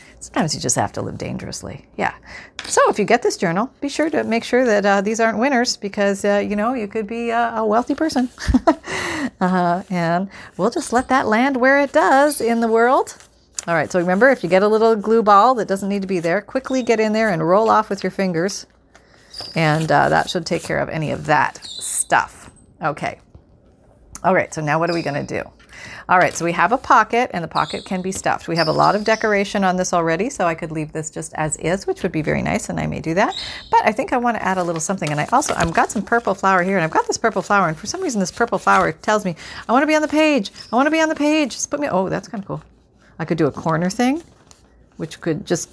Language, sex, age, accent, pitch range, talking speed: English, female, 40-59, American, 170-230 Hz, 265 wpm